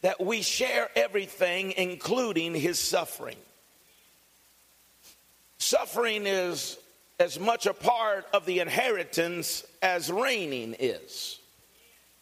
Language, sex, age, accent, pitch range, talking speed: English, male, 50-69, American, 190-240 Hz, 95 wpm